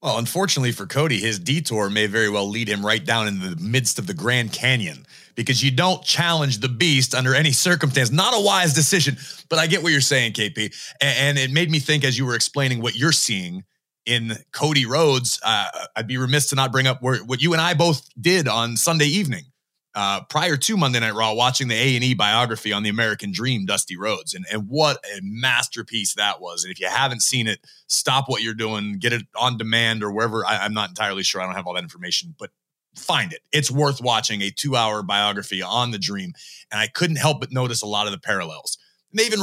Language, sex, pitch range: English, male, 110-150 Hz